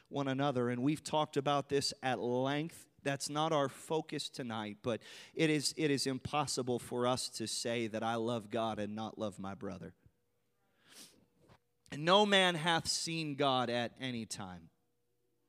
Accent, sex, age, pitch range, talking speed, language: American, male, 30-49, 130-185 Hz, 165 wpm, English